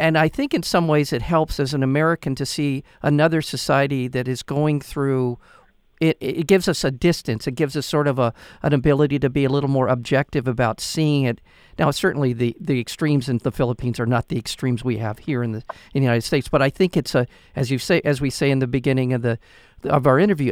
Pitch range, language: 125-150 Hz, English